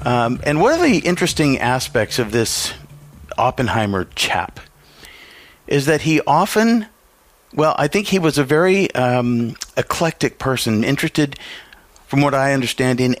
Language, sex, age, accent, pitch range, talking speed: English, male, 50-69, American, 110-145 Hz, 140 wpm